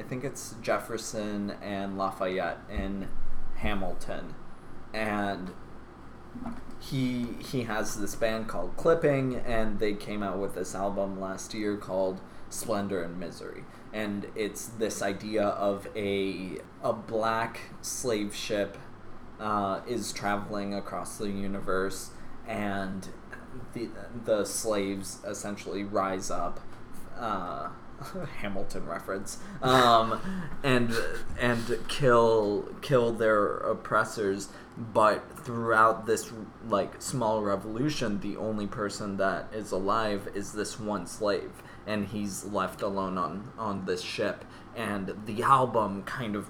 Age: 20-39